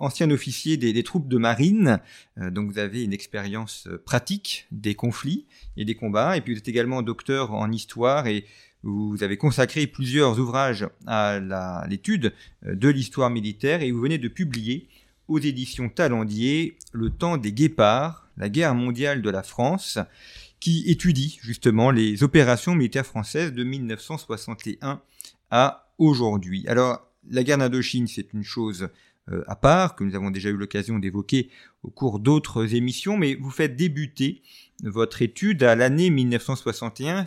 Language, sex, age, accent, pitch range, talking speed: French, male, 40-59, French, 110-145 Hz, 160 wpm